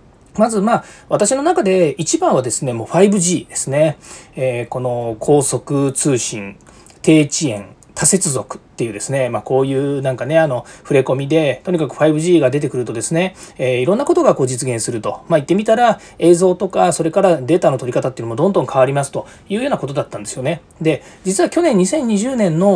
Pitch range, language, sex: 130-200 Hz, Japanese, male